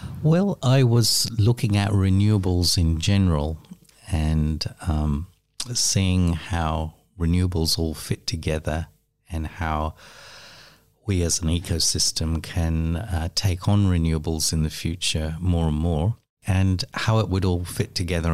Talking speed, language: 130 wpm, English